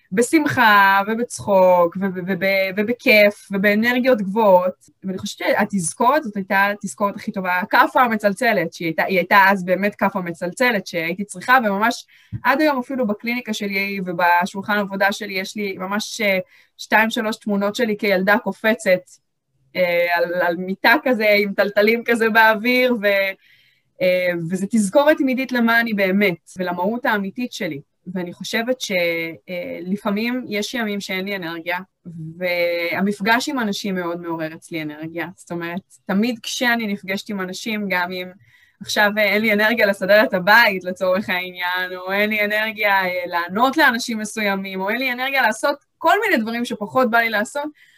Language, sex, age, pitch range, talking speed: Hebrew, female, 20-39, 185-230 Hz, 150 wpm